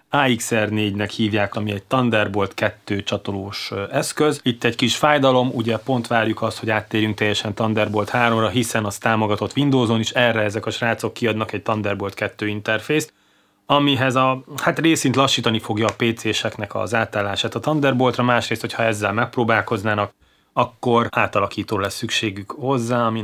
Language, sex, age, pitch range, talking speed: Hungarian, male, 30-49, 105-120 Hz, 150 wpm